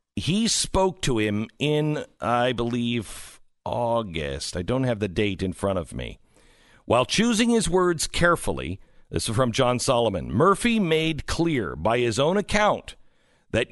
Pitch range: 120-190 Hz